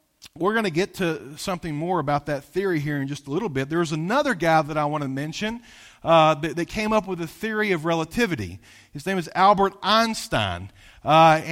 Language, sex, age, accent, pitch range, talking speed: English, male, 40-59, American, 170-230 Hz, 210 wpm